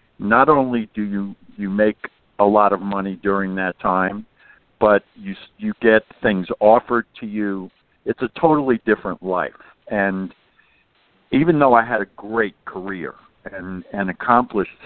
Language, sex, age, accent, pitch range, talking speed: English, male, 60-79, American, 95-115 Hz, 150 wpm